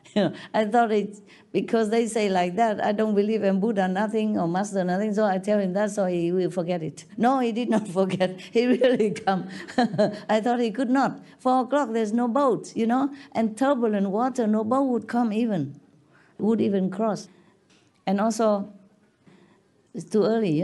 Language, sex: Korean, female